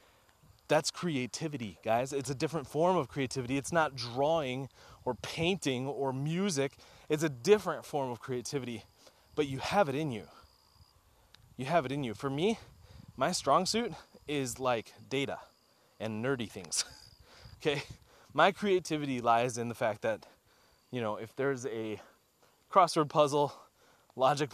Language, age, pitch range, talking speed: English, 20-39, 115-150 Hz, 145 wpm